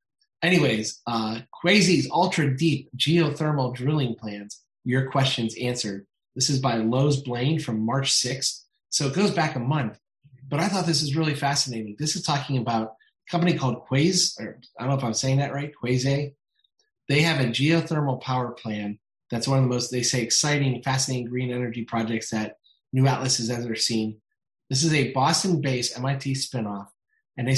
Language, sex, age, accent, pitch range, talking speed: English, male, 30-49, American, 120-150 Hz, 180 wpm